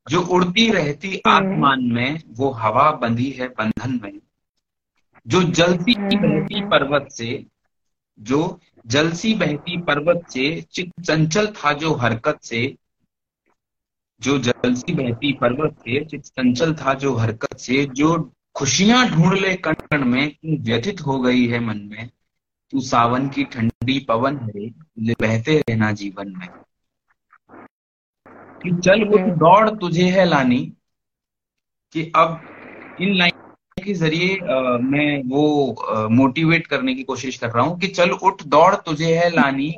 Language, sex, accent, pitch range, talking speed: Hindi, male, native, 125-170 Hz, 130 wpm